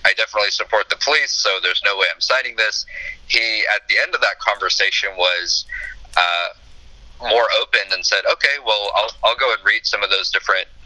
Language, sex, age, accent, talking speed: English, male, 30-49, American, 200 wpm